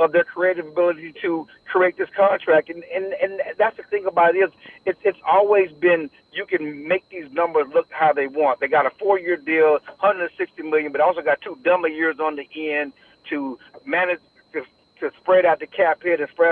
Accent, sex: American, male